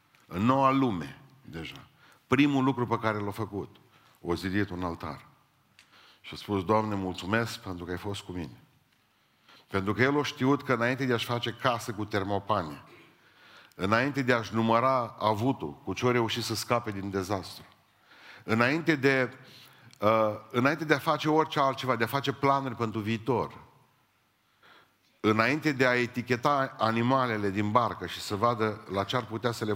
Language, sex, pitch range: Romanian, male, 100-125 Hz